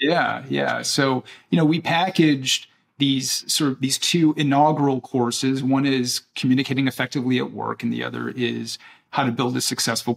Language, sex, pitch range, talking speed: English, male, 120-140 Hz, 170 wpm